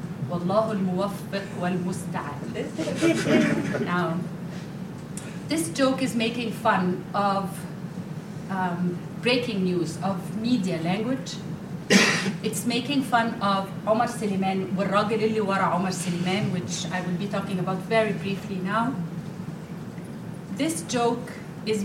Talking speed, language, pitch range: 85 wpm, English, 175-210 Hz